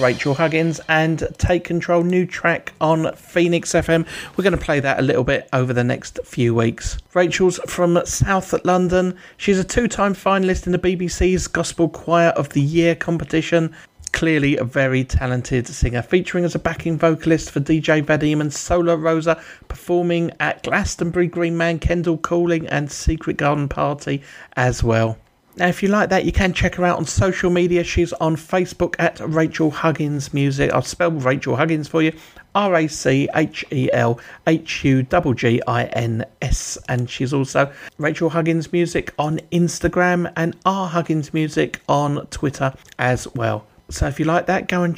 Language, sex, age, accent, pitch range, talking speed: English, male, 40-59, British, 140-175 Hz, 160 wpm